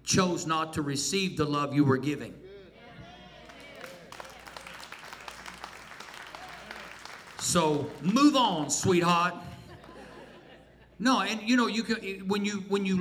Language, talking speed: English, 105 wpm